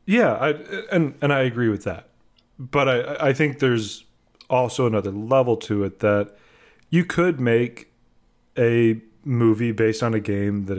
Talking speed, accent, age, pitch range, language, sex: 160 wpm, American, 30-49, 100-125 Hz, English, male